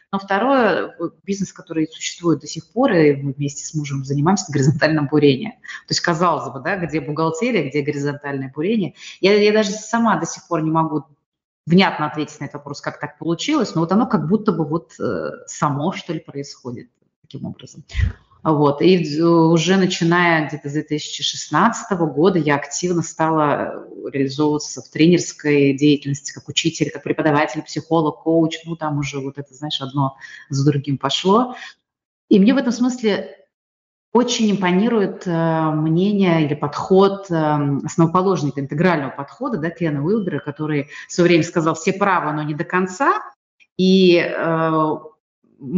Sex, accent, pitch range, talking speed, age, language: female, native, 150-190 Hz, 150 wpm, 30-49, Russian